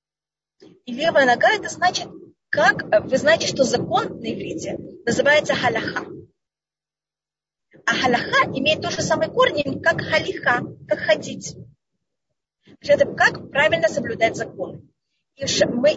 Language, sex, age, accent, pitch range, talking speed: Russian, female, 30-49, native, 245-300 Hz, 125 wpm